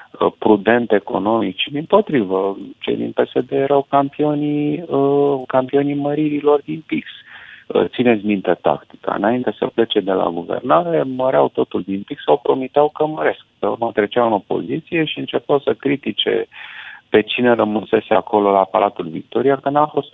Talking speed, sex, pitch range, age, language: 145 wpm, male, 105-150 Hz, 40-59, Romanian